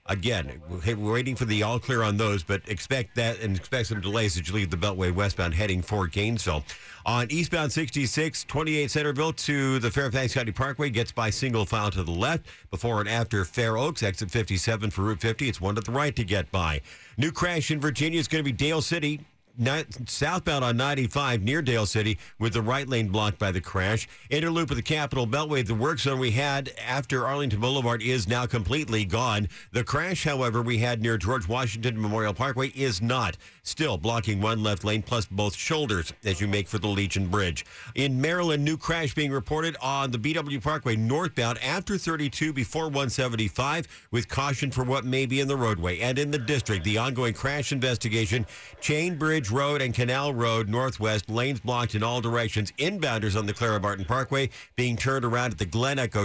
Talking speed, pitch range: 195 wpm, 105-140 Hz